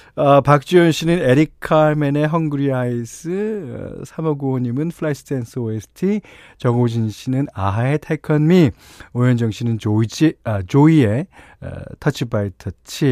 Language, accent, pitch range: Korean, native, 105-155 Hz